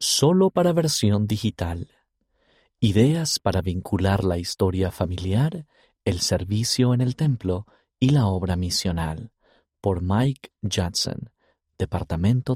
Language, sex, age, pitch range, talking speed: Spanish, male, 40-59, 90-135 Hz, 110 wpm